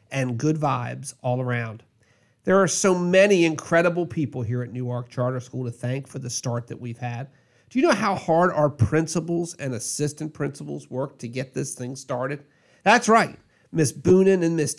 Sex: male